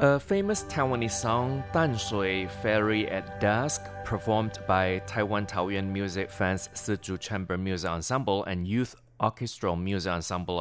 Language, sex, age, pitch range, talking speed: English, male, 30-49, 95-125 Hz, 135 wpm